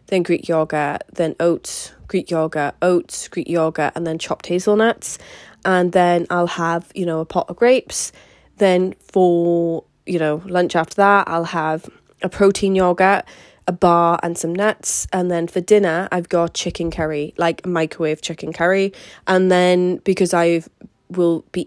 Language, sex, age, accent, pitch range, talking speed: English, female, 20-39, British, 165-185 Hz, 165 wpm